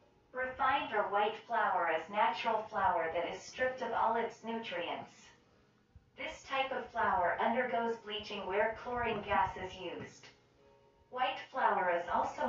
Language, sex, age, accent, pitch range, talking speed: English, female, 40-59, American, 195-250 Hz, 140 wpm